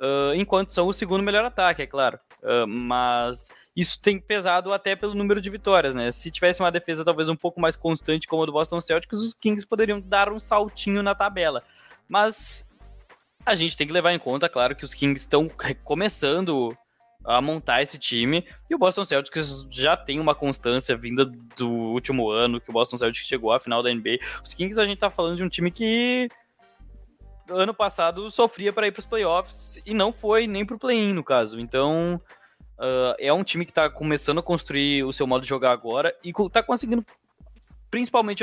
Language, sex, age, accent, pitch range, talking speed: Portuguese, male, 20-39, Brazilian, 135-205 Hz, 195 wpm